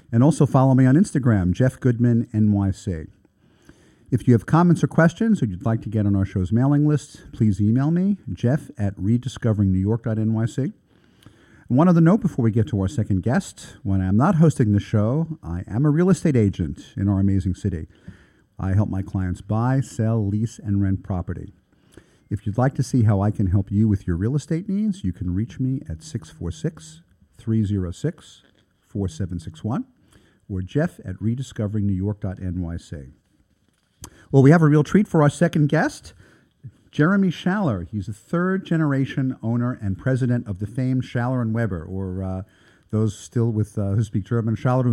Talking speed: 170 wpm